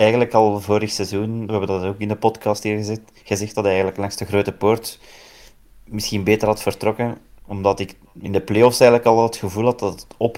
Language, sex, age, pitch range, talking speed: Dutch, male, 30-49, 100-115 Hz, 220 wpm